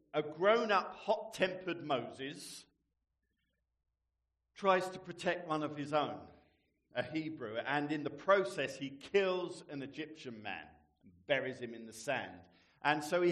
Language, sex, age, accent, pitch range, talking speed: English, male, 50-69, British, 125-175 Hz, 140 wpm